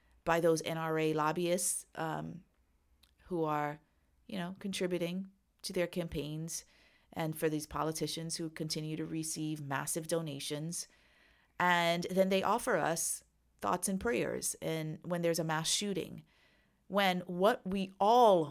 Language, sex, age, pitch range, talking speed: English, female, 30-49, 155-190 Hz, 135 wpm